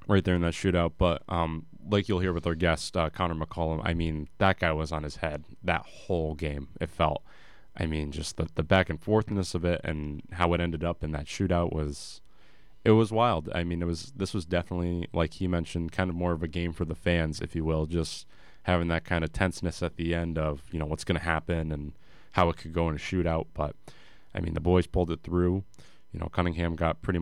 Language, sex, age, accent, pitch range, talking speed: English, male, 20-39, American, 80-95 Hz, 240 wpm